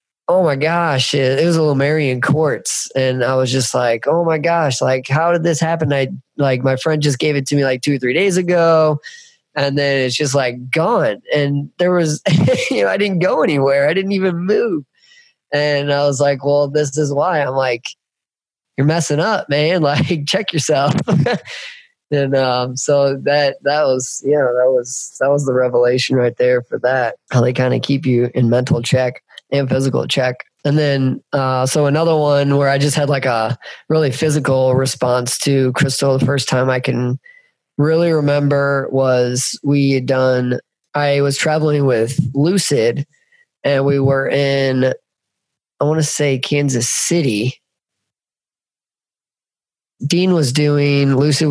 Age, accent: 20-39, American